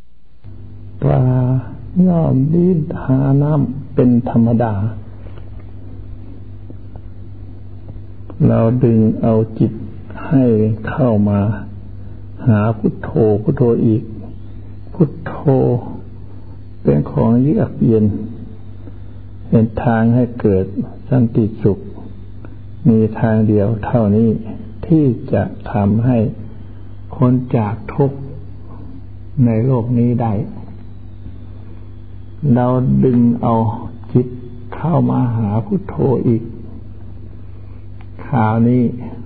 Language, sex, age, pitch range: Thai, male, 60-79, 100-120 Hz